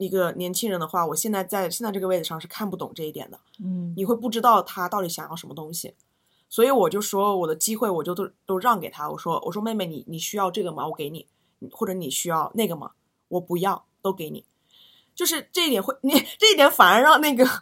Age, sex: 20-39, female